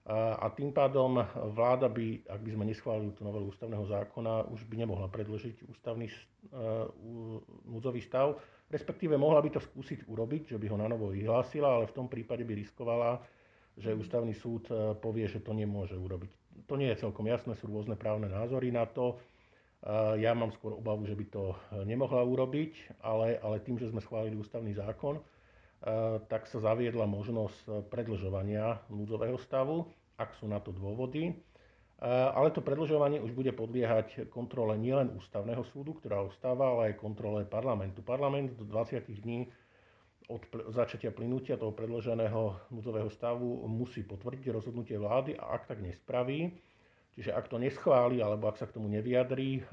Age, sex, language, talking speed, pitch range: 50-69, male, Slovak, 160 wpm, 105-125 Hz